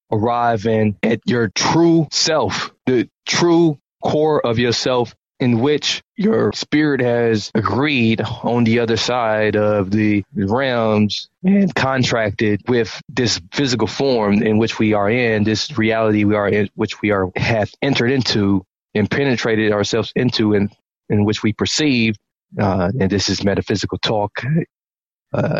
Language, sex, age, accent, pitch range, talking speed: English, male, 20-39, American, 105-135 Hz, 145 wpm